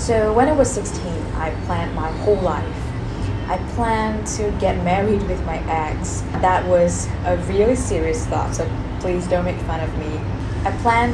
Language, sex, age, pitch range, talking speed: Vietnamese, female, 20-39, 90-135 Hz, 180 wpm